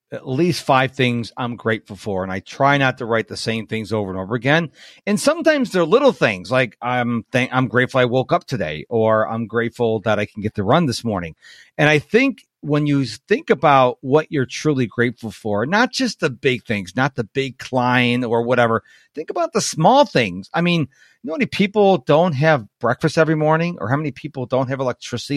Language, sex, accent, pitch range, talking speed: English, male, American, 120-175 Hz, 220 wpm